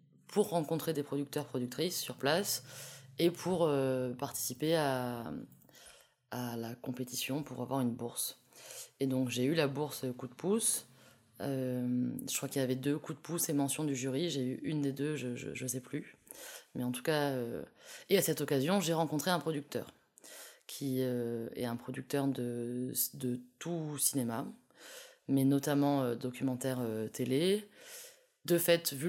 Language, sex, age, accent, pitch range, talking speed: French, female, 20-39, French, 130-155 Hz, 165 wpm